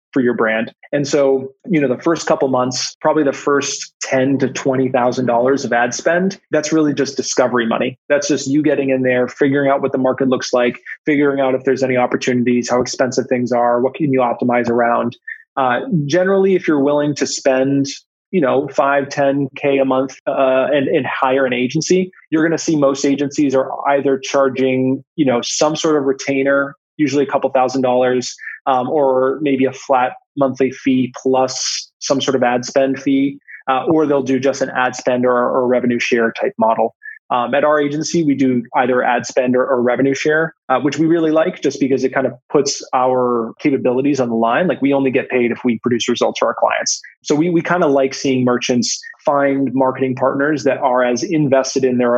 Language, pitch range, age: English, 125-145 Hz, 20-39